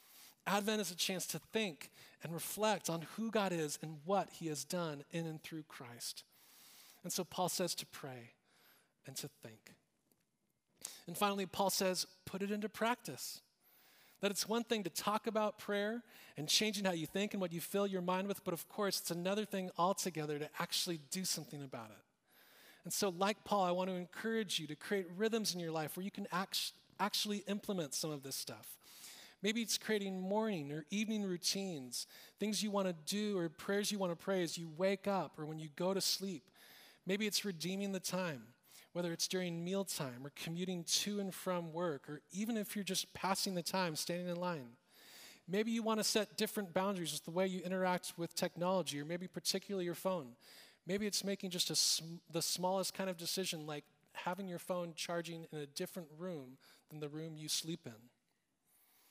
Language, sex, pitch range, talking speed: English, male, 165-200 Hz, 195 wpm